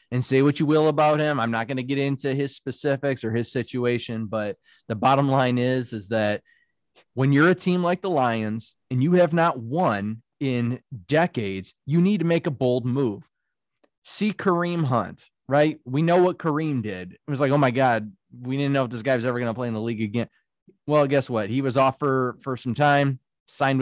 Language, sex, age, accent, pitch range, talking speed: English, male, 30-49, American, 115-150 Hz, 220 wpm